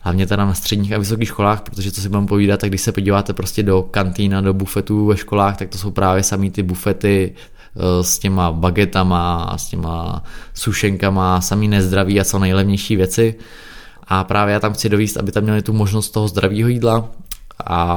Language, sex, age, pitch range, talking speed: Czech, male, 20-39, 95-105 Hz, 190 wpm